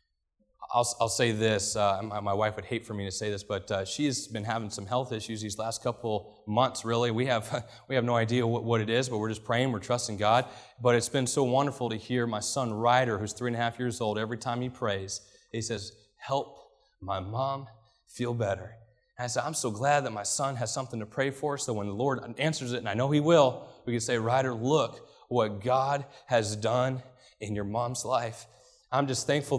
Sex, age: male, 30-49